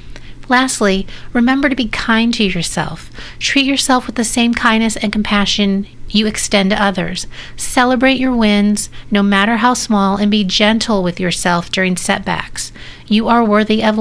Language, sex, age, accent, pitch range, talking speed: English, female, 40-59, American, 195-230 Hz, 160 wpm